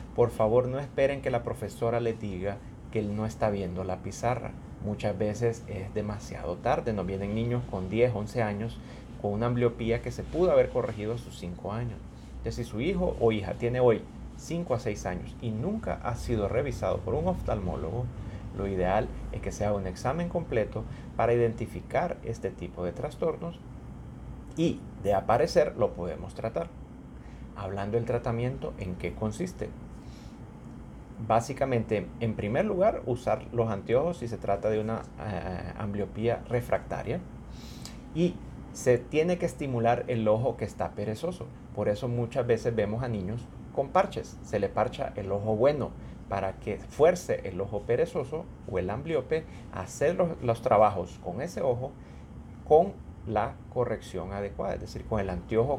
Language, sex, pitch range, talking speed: Spanish, male, 100-120 Hz, 165 wpm